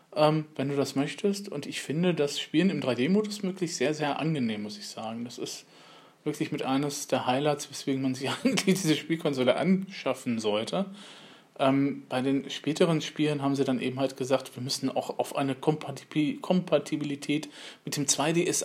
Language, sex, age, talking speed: German, male, 40-59, 175 wpm